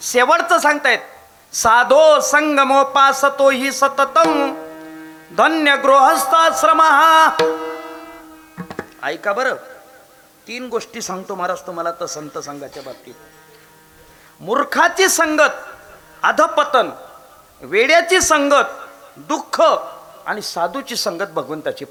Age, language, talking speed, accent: 40-59, Marathi, 85 wpm, native